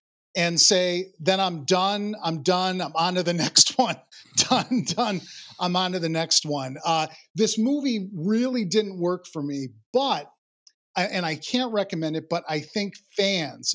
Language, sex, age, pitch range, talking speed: English, male, 40-59, 155-195 Hz, 170 wpm